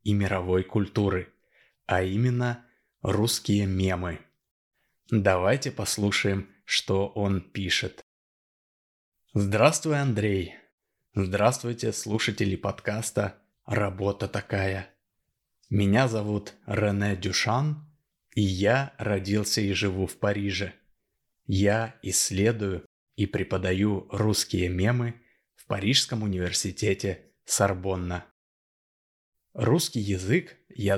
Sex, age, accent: male, 20-39, native